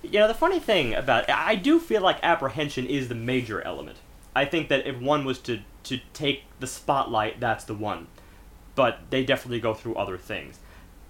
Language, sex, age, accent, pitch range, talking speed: English, male, 30-49, American, 105-150 Hz, 195 wpm